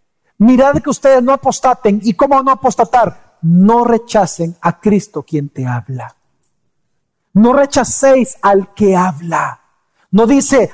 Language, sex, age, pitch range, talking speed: Spanish, male, 50-69, 145-220 Hz, 130 wpm